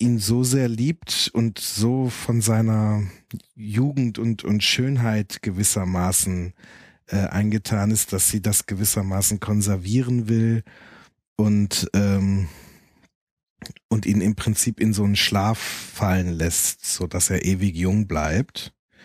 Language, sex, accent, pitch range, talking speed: German, male, German, 95-115 Hz, 125 wpm